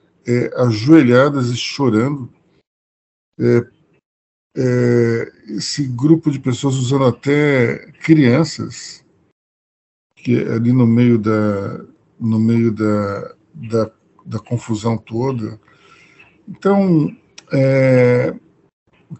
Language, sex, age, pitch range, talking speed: Portuguese, male, 50-69, 110-145 Hz, 90 wpm